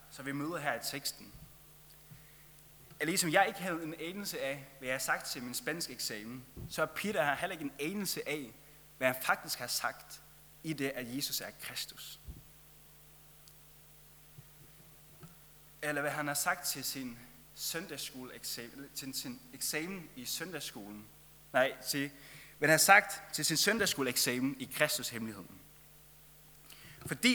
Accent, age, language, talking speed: native, 30-49, Danish, 145 wpm